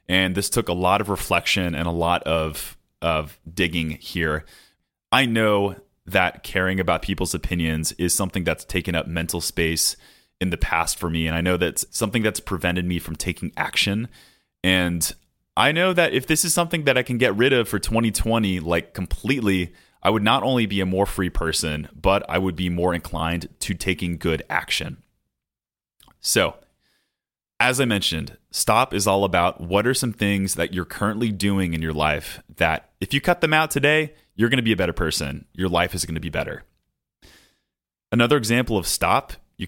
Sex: male